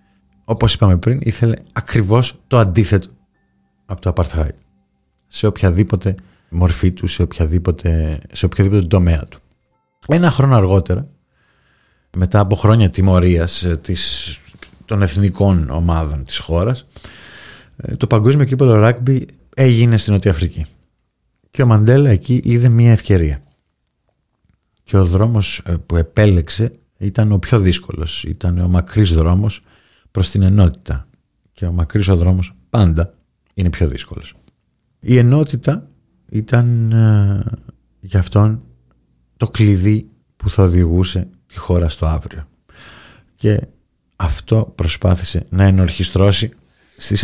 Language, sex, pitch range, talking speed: Greek, male, 85-110 Hz, 115 wpm